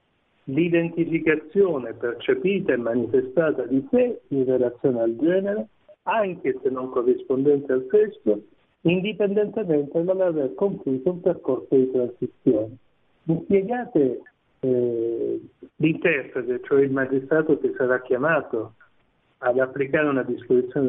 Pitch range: 130-195 Hz